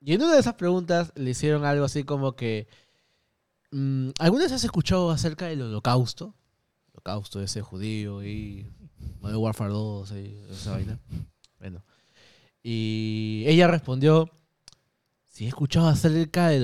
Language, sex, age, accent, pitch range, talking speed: Spanish, male, 20-39, Argentinian, 120-175 Hz, 145 wpm